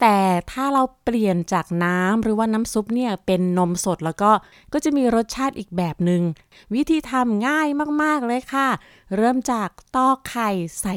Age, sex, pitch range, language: 20-39, female, 185-255 Hz, Thai